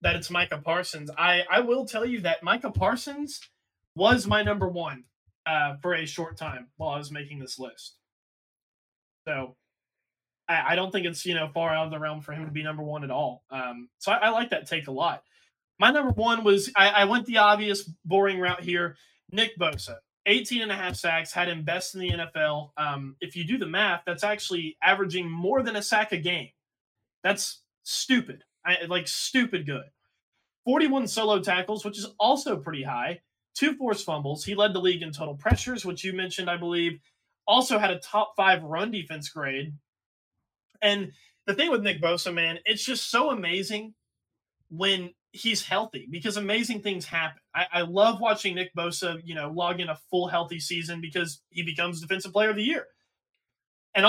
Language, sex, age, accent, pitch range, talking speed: English, male, 20-39, American, 155-205 Hz, 195 wpm